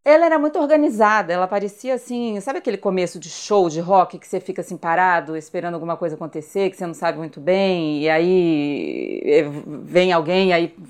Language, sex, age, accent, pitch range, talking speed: Portuguese, female, 40-59, Brazilian, 170-220 Hz, 185 wpm